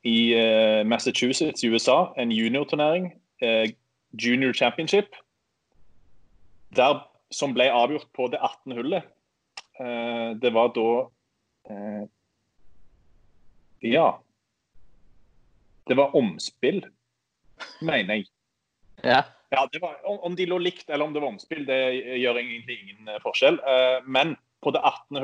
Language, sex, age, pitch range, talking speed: English, male, 30-49, 110-135 Hz, 105 wpm